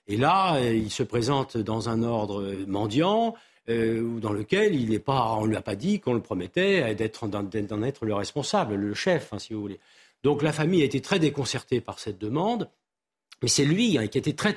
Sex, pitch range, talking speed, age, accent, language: male, 110-155 Hz, 220 wpm, 50-69, French, French